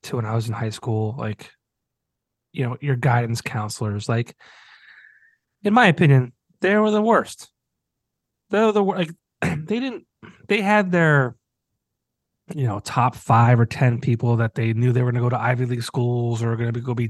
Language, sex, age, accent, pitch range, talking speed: English, male, 30-49, American, 115-155 Hz, 185 wpm